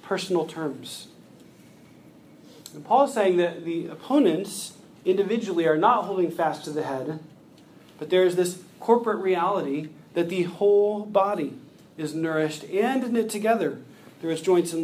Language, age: English, 40-59